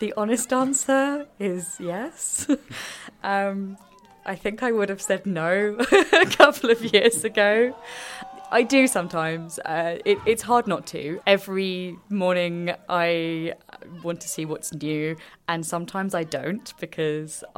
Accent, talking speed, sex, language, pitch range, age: British, 135 wpm, female, English, 160-205 Hz, 20-39